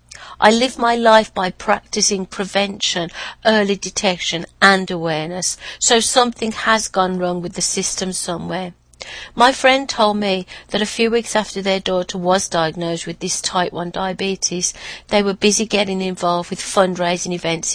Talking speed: 155 wpm